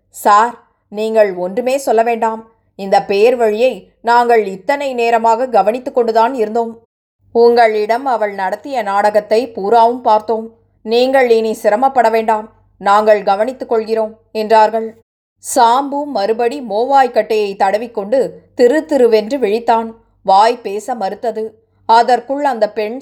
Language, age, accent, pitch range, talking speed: Tamil, 20-39, native, 215-240 Hz, 105 wpm